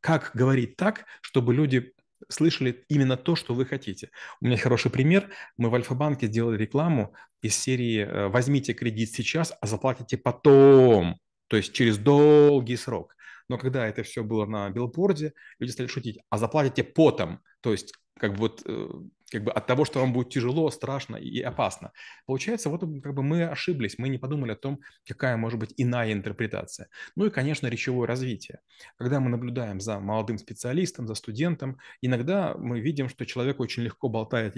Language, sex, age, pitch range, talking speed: Russian, male, 30-49, 115-140 Hz, 170 wpm